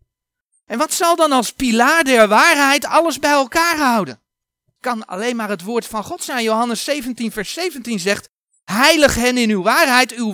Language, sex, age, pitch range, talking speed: Dutch, male, 40-59, 170-255 Hz, 185 wpm